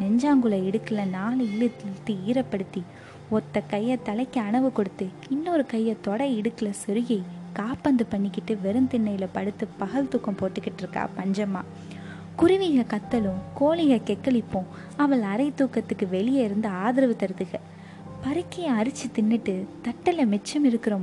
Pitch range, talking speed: 205-255 Hz, 110 wpm